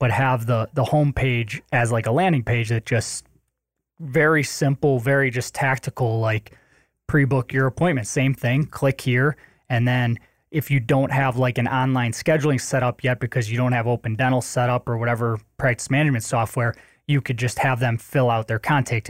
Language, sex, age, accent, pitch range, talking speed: English, male, 20-39, American, 120-140 Hz, 190 wpm